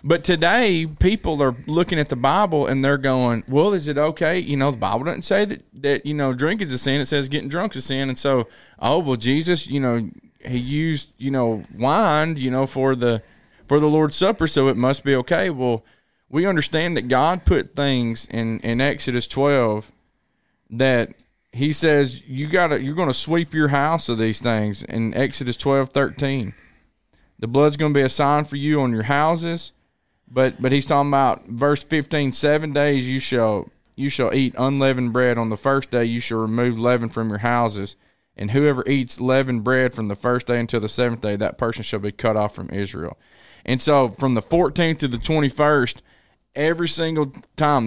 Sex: male